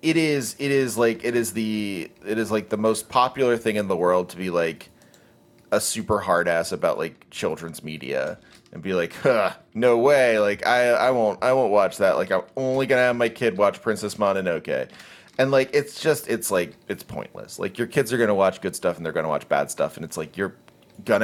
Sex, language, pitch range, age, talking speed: male, English, 90-130 Hz, 30-49, 235 wpm